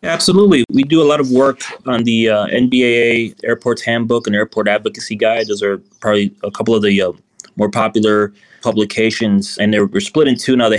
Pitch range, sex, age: 100-120 Hz, male, 20-39